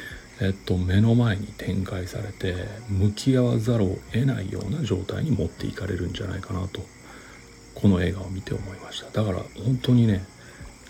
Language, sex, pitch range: Japanese, male, 95-115 Hz